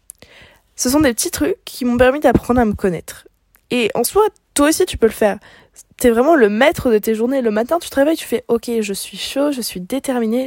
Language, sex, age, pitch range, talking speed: French, female, 20-39, 195-255 Hz, 240 wpm